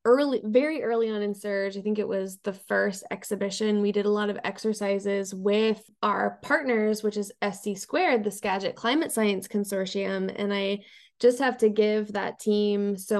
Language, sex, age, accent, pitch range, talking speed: English, female, 20-39, American, 200-230 Hz, 180 wpm